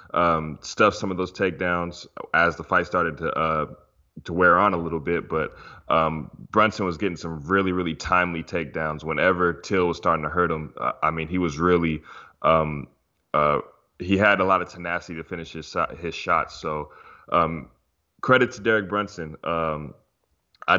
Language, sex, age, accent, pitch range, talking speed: English, male, 20-39, American, 80-95 Hz, 180 wpm